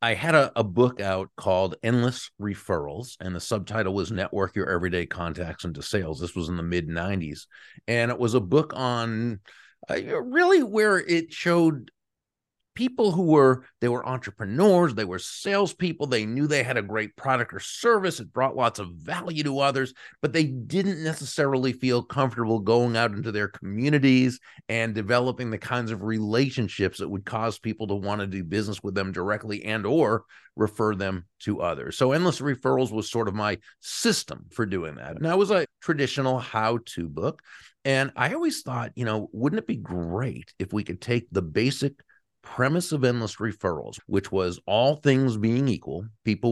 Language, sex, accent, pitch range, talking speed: English, male, American, 100-130 Hz, 180 wpm